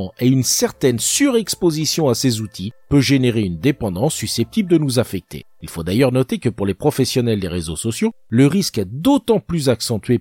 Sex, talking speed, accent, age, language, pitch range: male, 190 wpm, French, 50-69, French, 100-160 Hz